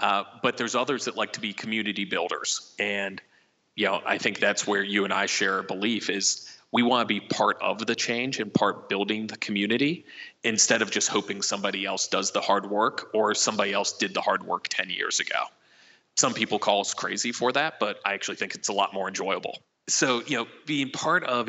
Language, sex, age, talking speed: English, male, 30-49, 220 wpm